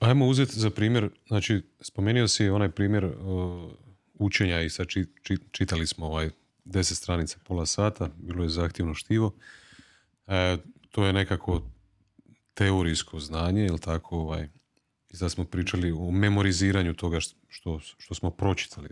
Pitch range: 80-100 Hz